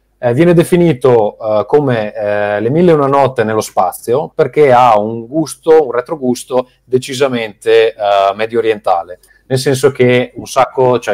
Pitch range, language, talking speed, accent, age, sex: 100-125 Hz, Italian, 145 wpm, native, 30-49, male